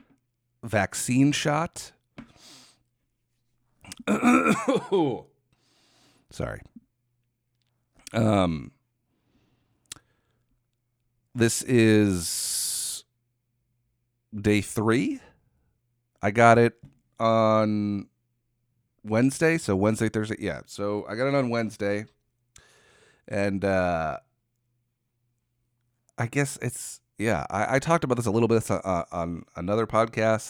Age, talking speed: 40-59, 80 wpm